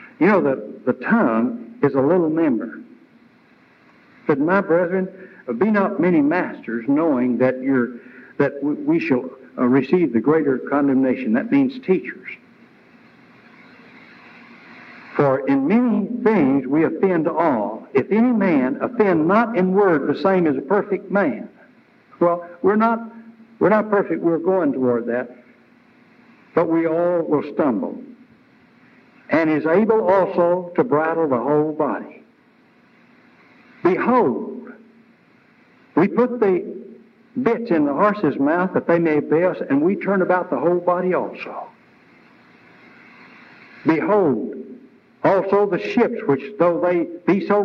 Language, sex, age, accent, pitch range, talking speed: English, male, 60-79, American, 170-240 Hz, 135 wpm